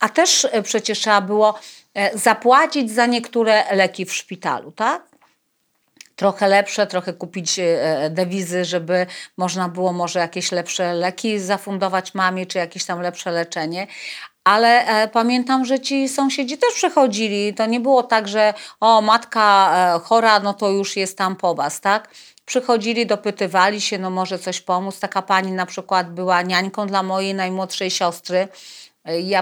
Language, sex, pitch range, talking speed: Polish, female, 185-215 Hz, 145 wpm